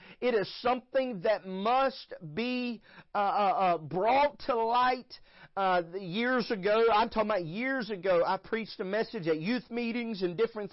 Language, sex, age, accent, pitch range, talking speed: English, male, 40-59, American, 200-245 Hz, 155 wpm